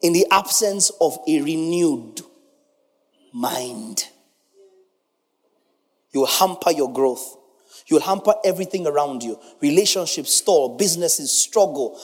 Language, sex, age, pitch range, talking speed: English, male, 30-49, 160-230 Hz, 110 wpm